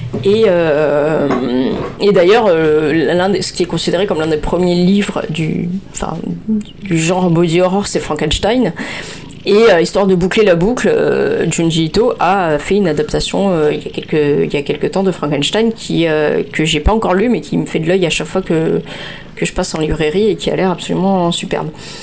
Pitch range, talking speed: 165-215 Hz, 210 wpm